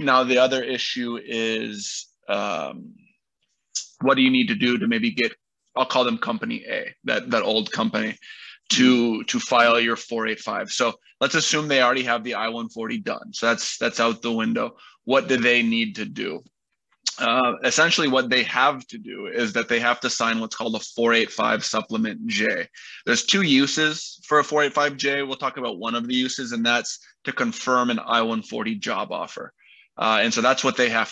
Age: 20-39